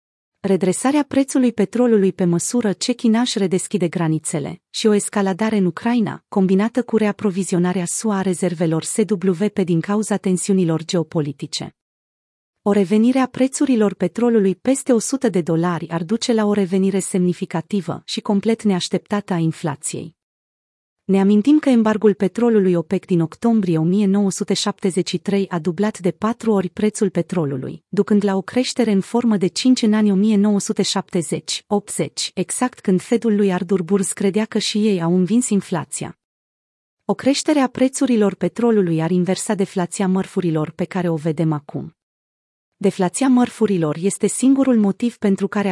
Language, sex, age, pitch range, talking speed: Romanian, female, 30-49, 180-215 Hz, 140 wpm